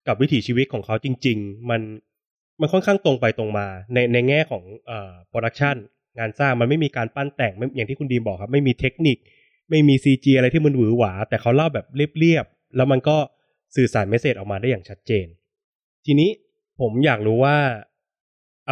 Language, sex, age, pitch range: Thai, male, 20-39, 110-135 Hz